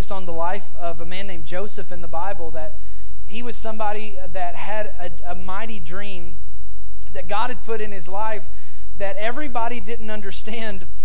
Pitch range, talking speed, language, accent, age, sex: 170-225 Hz, 175 wpm, English, American, 30-49, male